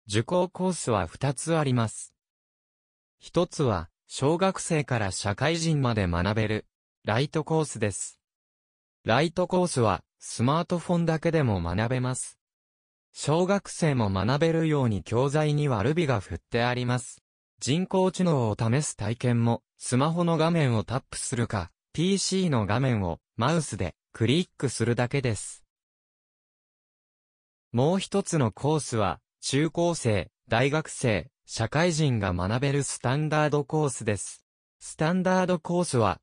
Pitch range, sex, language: 110-160 Hz, male, Japanese